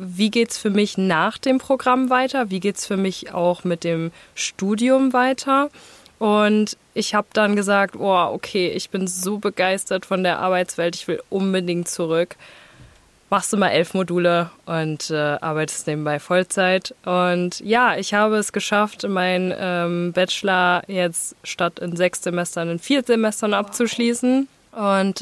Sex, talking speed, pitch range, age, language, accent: female, 155 wpm, 180-210 Hz, 20-39, German, German